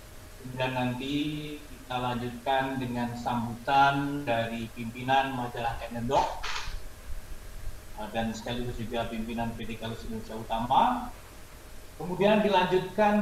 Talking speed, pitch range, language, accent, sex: 90 wpm, 115-150 Hz, Indonesian, native, male